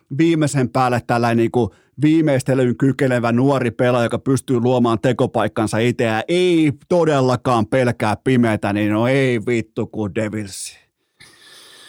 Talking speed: 115 wpm